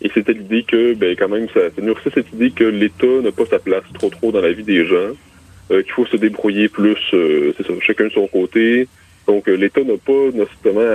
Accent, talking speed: French, 225 wpm